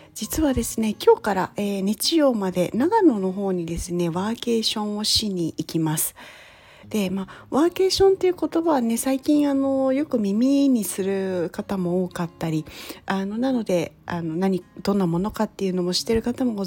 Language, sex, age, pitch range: Japanese, female, 40-59, 185-265 Hz